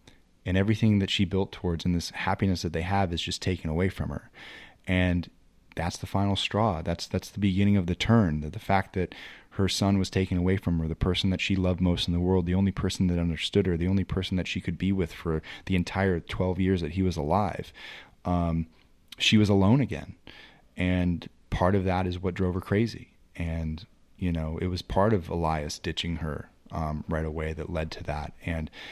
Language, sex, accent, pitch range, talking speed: English, male, American, 85-95 Hz, 220 wpm